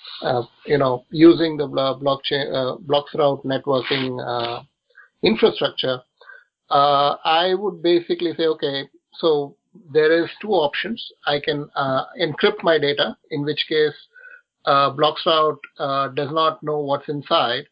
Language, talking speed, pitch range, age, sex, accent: English, 140 wpm, 140-160 Hz, 50-69, male, Indian